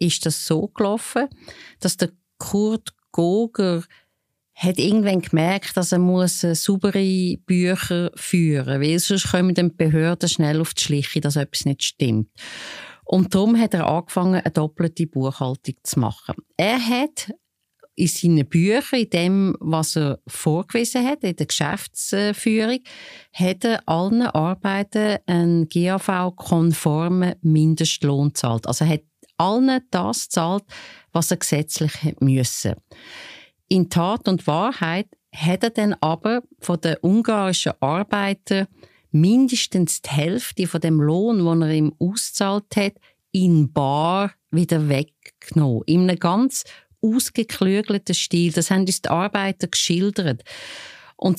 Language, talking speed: German, 130 wpm